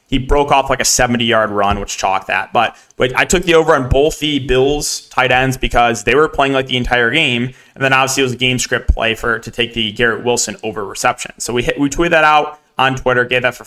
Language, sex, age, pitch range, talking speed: English, male, 20-39, 120-140 Hz, 260 wpm